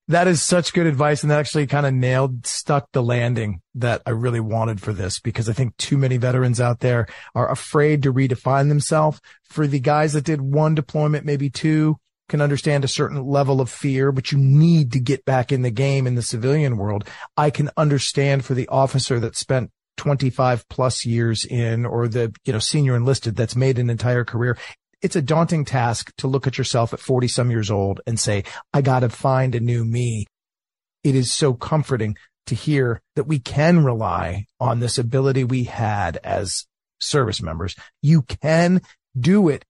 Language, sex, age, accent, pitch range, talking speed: English, male, 40-59, American, 120-155 Hz, 195 wpm